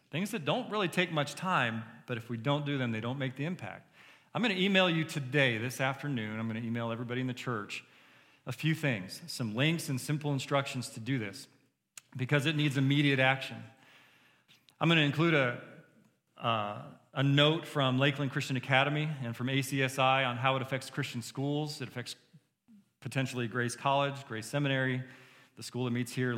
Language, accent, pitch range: English, American, 125-145 Hz